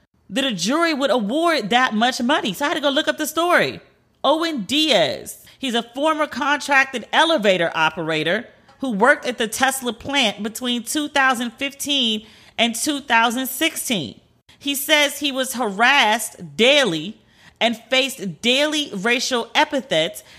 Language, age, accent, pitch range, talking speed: English, 40-59, American, 225-290 Hz, 135 wpm